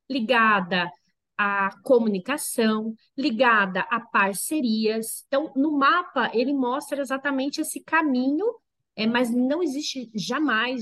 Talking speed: 100 wpm